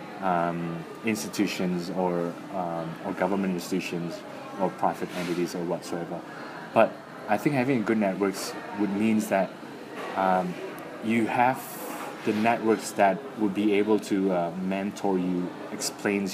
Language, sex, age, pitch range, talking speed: English, male, 20-39, 90-110 Hz, 130 wpm